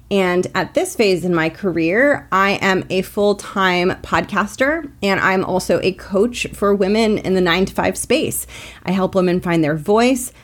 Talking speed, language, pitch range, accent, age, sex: 165 wpm, English, 170-215 Hz, American, 30-49, female